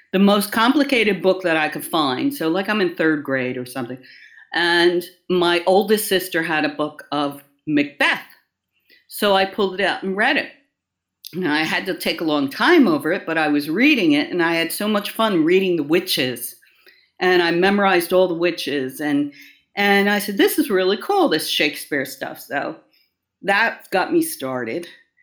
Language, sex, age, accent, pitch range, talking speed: English, female, 50-69, American, 160-235 Hz, 190 wpm